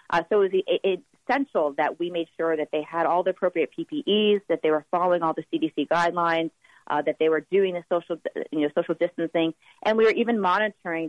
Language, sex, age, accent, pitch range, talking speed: English, female, 30-49, American, 155-180 Hz, 215 wpm